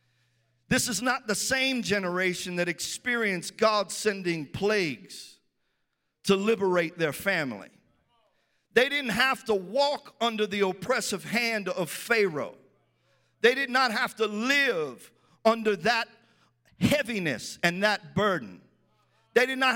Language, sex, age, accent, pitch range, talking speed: English, male, 50-69, American, 190-245 Hz, 125 wpm